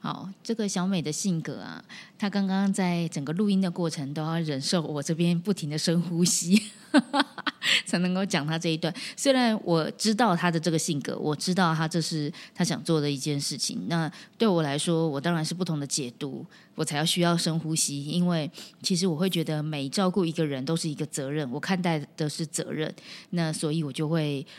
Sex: female